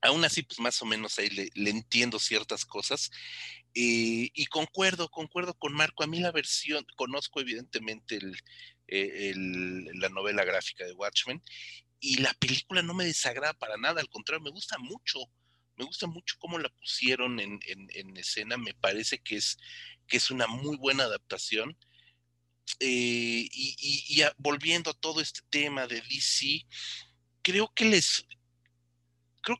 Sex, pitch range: male, 115-165 Hz